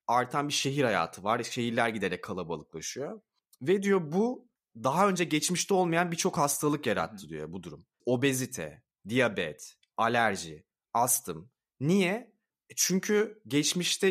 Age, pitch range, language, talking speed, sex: 30-49, 130-170 Hz, Turkish, 120 wpm, male